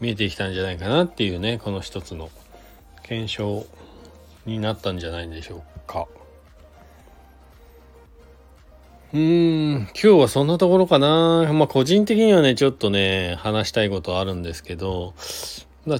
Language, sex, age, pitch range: Japanese, male, 40-59, 85-125 Hz